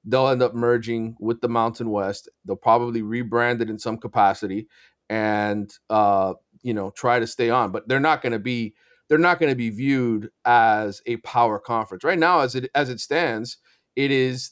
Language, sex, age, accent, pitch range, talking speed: English, male, 30-49, American, 110-130 Hz, 200 wpm